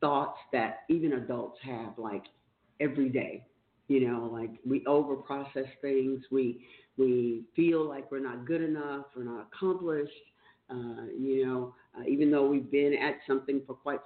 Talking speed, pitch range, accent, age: 160 wpm, 125-145 Hz, American, 50-69